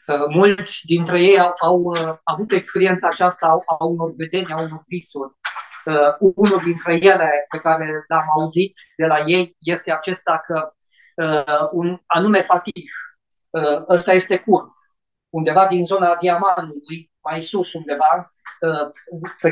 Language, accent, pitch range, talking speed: Romanian, native, 165-195 Hz, 140 wpm